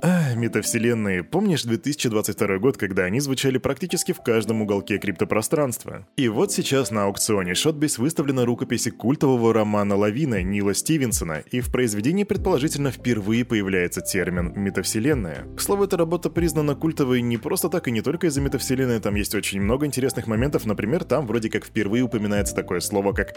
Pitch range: 105-150 Hz